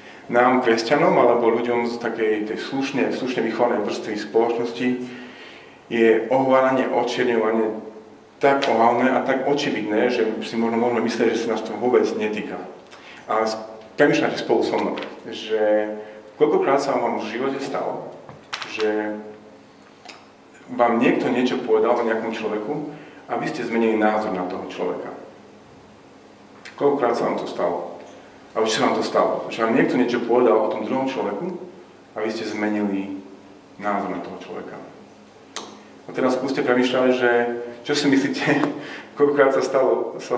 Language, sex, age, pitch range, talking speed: Slovak, male, 40-59, 110-130 Hz, 145 wpm